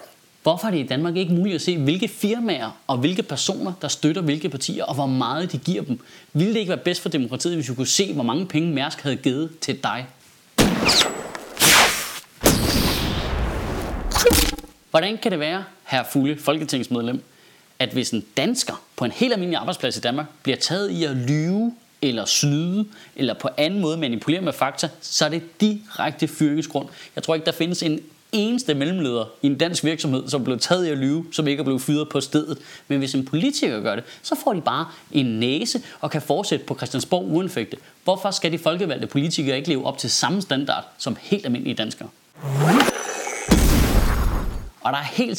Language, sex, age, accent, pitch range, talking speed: Danish, male, 30-49, native, 140-180 Hz, 190 wpm